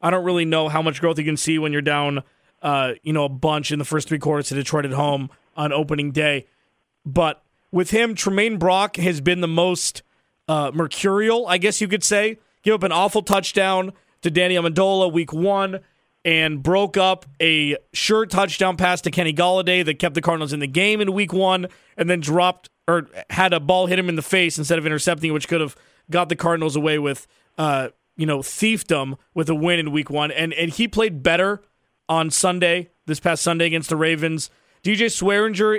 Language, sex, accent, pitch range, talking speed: English, male, American, 155-195 Hz, 210 wpm